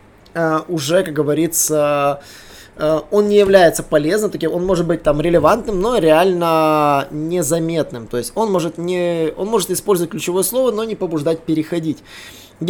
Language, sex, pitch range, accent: Russian, male, 145-185 Hz, native